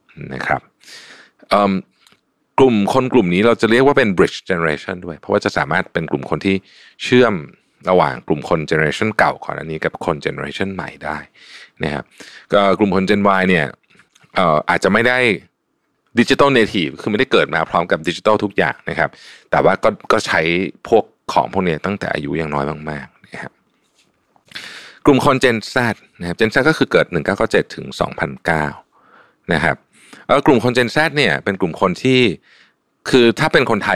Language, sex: Thai, male